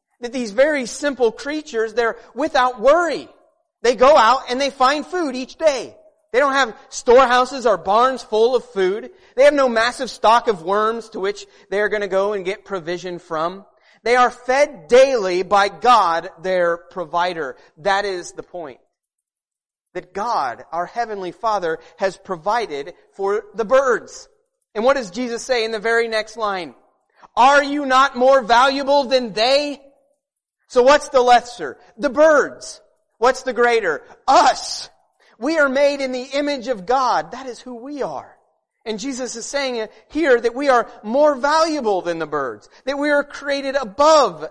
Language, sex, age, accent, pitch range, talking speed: English, male, 30-49, American, 205-285 Hz, 165 wpm